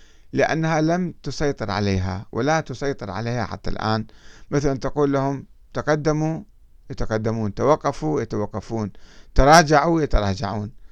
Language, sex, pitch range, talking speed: Arabic, male, 105-140 Hz, 100 wpm